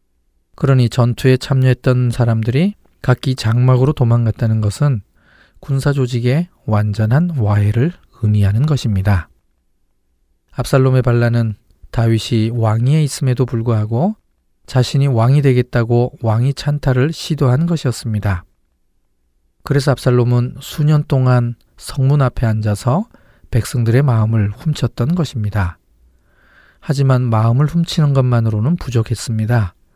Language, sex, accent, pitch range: Korean, male, native, 105-135 Hz